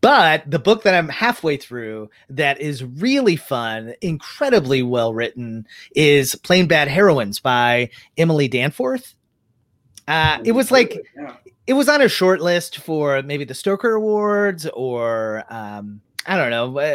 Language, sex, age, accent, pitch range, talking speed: English, male, 30-49, American, 130-175 Hz, 145 wpm